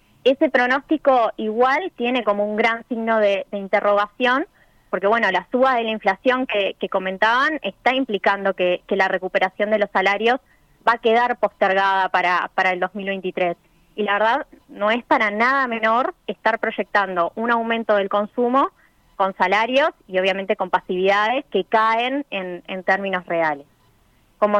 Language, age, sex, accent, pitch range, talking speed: Spanish, 20-39, female, Argentinian, 190-235 Hz, 160 wpm